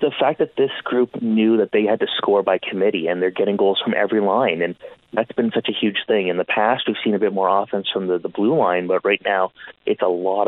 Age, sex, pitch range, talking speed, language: 30-49, male, 95-110 Hz, 270 wpm, English